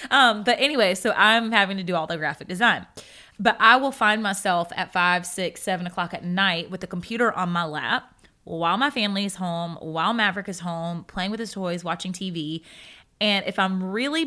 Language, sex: English, female